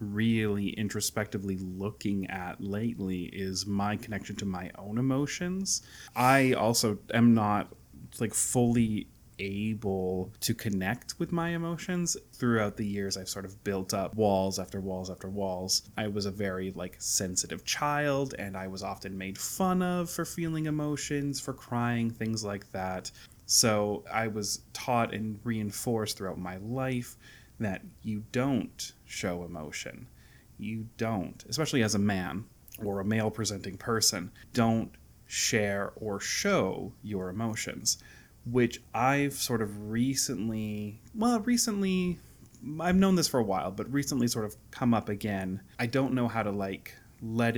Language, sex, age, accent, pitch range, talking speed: English, male, 30-49, American, 100-125 Hz, 150 wpm